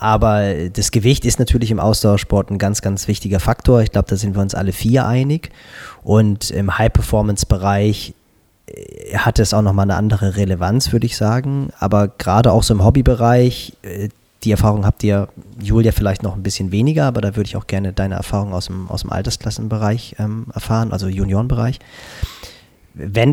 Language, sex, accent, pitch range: German, male, German, 100-120 Hz